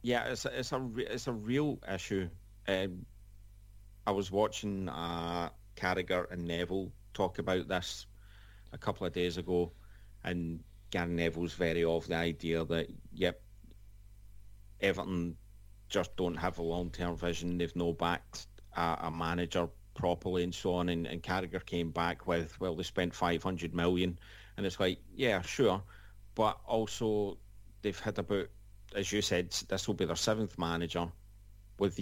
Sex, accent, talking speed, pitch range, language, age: male, British, 155 wpm, 90-100 Hz, English, 40-59